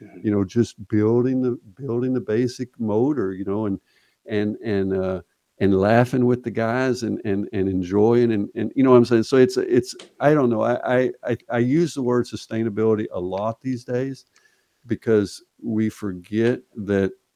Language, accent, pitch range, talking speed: English, American, 100-125 Hz, 180 wpm